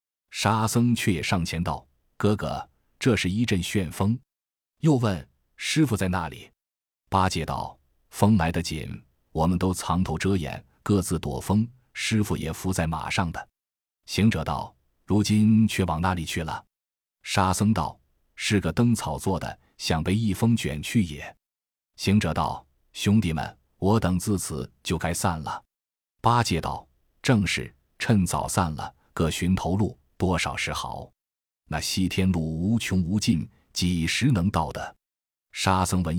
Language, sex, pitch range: Chinese, male, 80-105 Hz